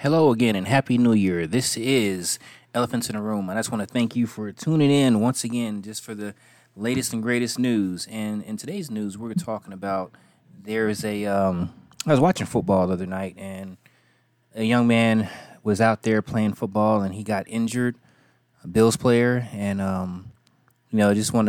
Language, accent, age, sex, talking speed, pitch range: English, American, 20-39, male, 200 wpm, 95-115 Hz